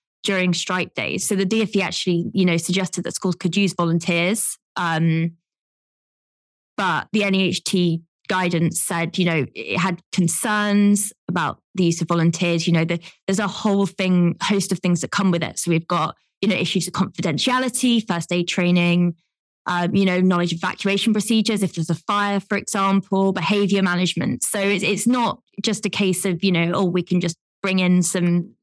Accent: British